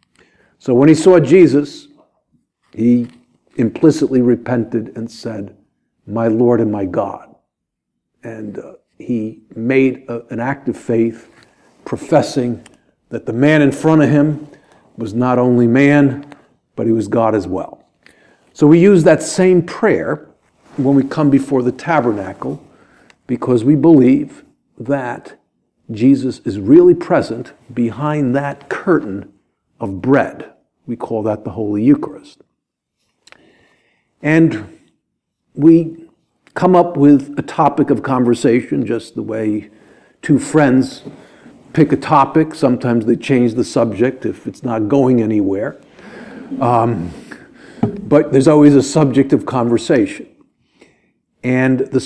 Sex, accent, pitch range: male, American, 115-150 Hz